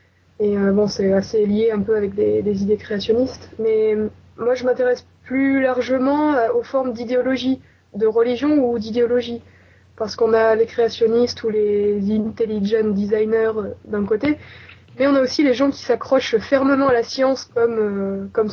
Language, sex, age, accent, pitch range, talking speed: French, female, 20-39, French, 215-260 Hz, 165 wpm